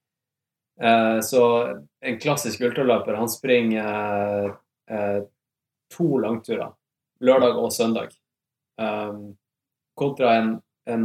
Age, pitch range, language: 20-39, 105-125 Hz, English